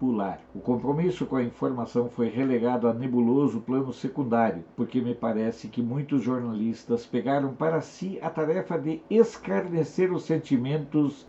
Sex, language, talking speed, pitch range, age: male, Portuguese, 140 wpm, 120-145 Hz, 60-79